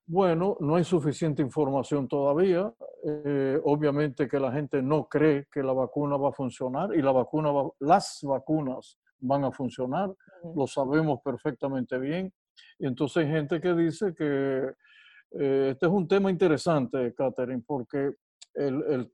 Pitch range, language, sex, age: 135-165 Hz, Spanish, male, 60-79